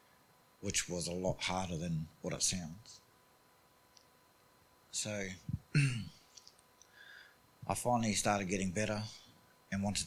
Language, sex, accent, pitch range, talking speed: English, male, Australian, 90-105 Hz, 100 wpm